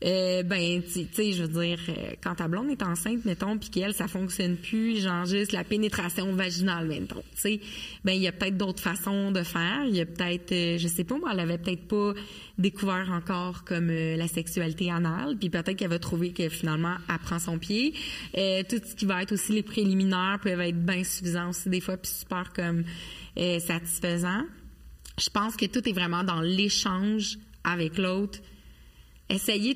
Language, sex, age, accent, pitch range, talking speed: French, female, 30-49, Canadian, 175-205 Hz, 195 wpm